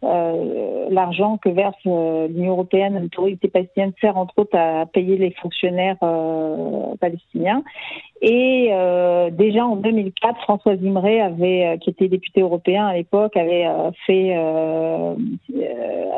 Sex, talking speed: female, 145 wpm